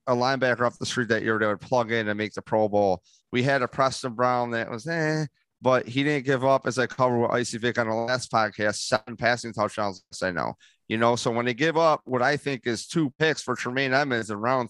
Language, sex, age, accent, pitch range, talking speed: English, male, 30-49, American, 115-140 Hz, 255 wpm